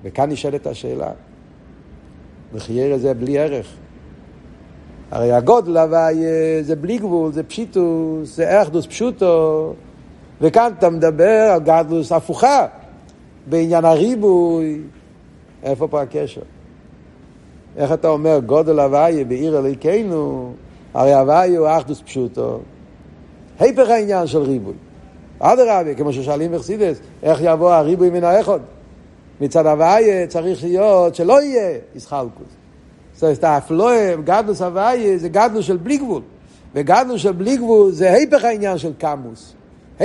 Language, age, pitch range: Hebrew, 60-79, 145-205 Hz